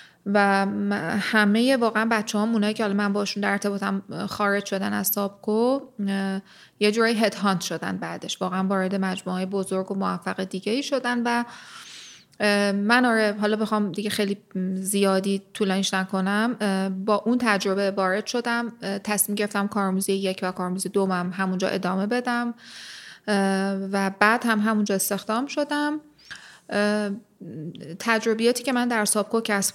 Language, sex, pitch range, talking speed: Persian, female, 190-220 Hz, 140 wpm